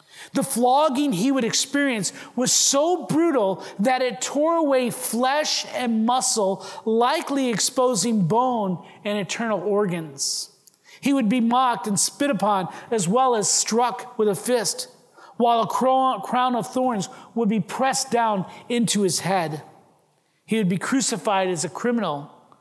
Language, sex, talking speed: English, male, 145 wpm